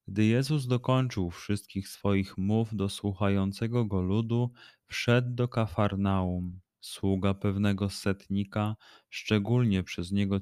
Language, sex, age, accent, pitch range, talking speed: Polish, male, 20-39, native, 95-110 Hz, 110 wpm